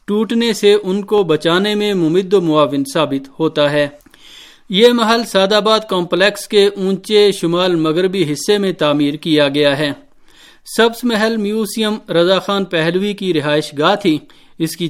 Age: 50-69